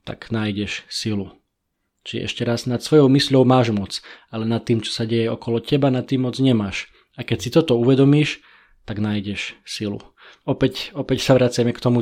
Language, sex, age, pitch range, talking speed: Slovak, male, 20-39, 115-125 Hz, 185 wpm